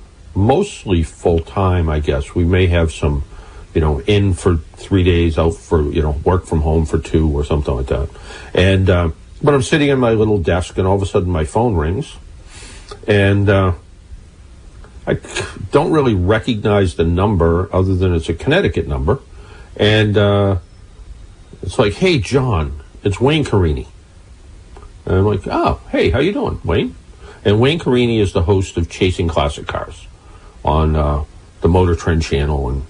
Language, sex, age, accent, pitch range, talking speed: English, male, 50-69, American, 85-100 Hz, 170 wpm